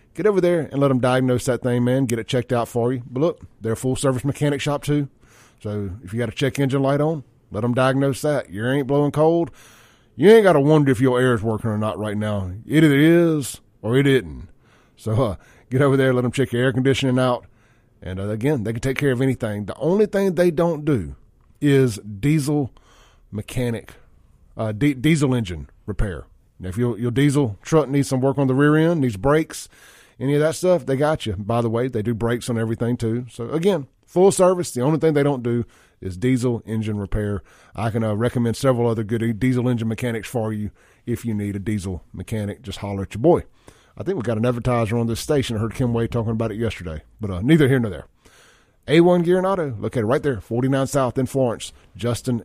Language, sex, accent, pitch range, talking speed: English, male, American, 110-140 Hz, 225 wpm